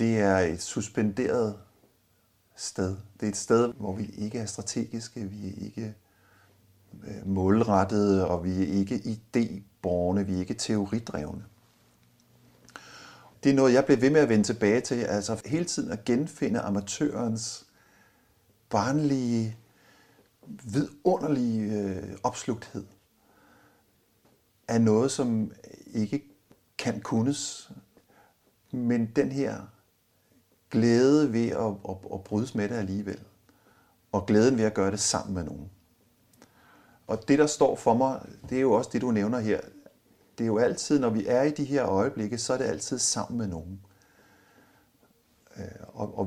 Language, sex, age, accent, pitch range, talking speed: Danish, male, 50-69, native, 100-115 Hz, 135 wpm